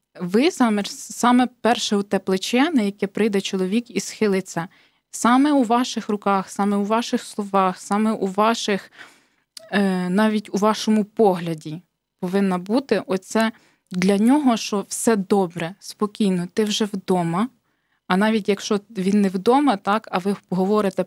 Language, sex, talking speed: Ukrainian, female, 140 wpm